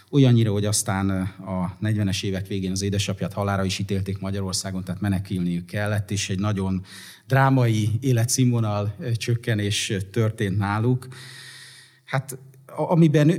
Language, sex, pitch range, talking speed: Hungarian, male, 95-120 Hz, 115 wpm